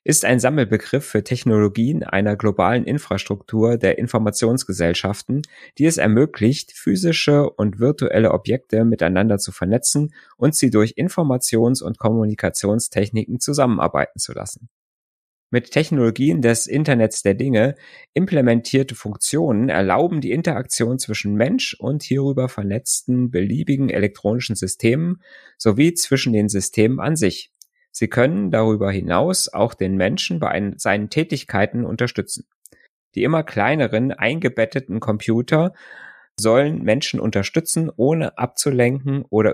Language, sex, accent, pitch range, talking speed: German, male, German, 105-135 Hz, 115 wpm